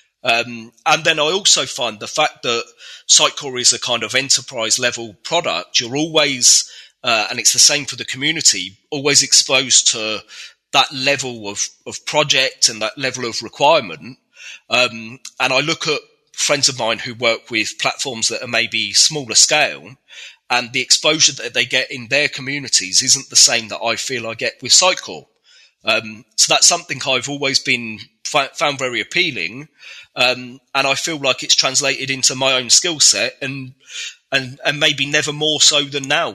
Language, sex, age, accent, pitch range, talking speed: English, male, 30-49, British, 115-140 Hz, 175 wpm